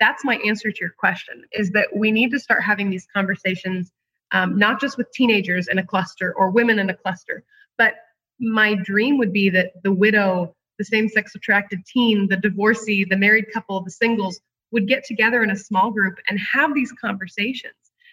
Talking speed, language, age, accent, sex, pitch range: 190 wpm, English, 30-49, American, female, 190-225 Hz